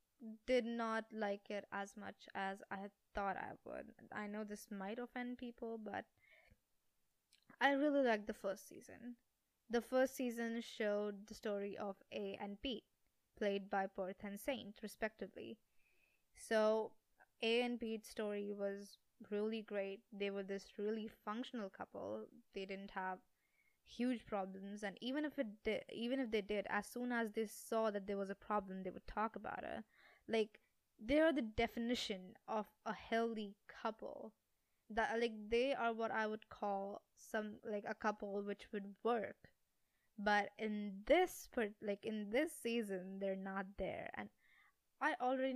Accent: Indian